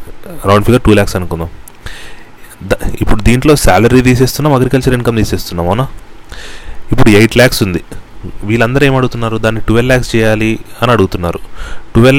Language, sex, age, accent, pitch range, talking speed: Telugu, male, 30-49, native, 105-125 Hz, 135 wpm